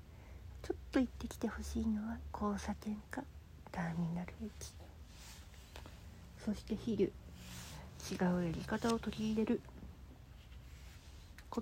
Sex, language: female, Japanese